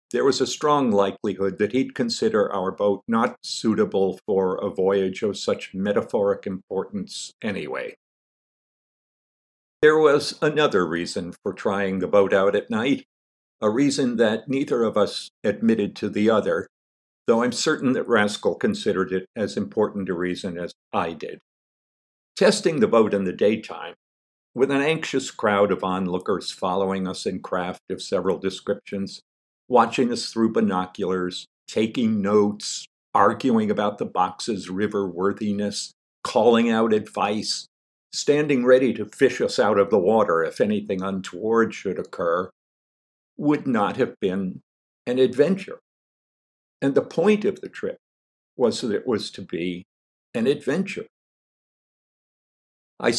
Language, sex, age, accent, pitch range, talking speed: English, male, 50-69, American, 95-120 Hz, 140 wpm